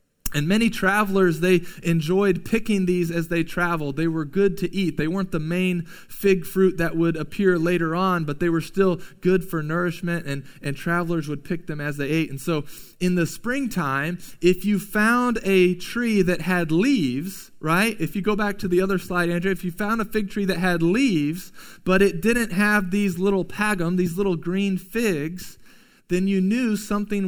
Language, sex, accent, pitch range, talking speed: English, male, American, 155-190 Hz, 195 wpm